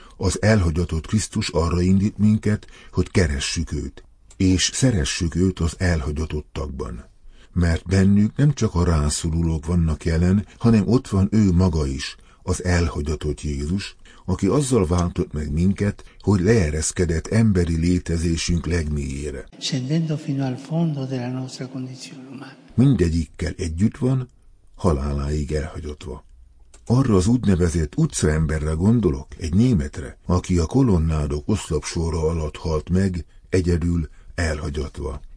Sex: male